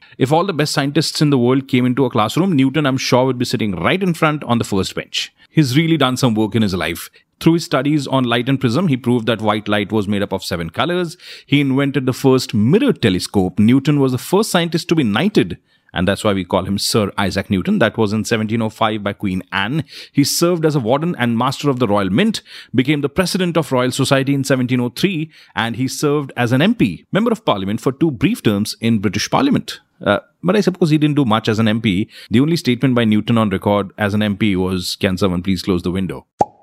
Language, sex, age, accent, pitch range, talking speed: Hindi, male, 30-49, native, 105-140 Hz, 240 wpm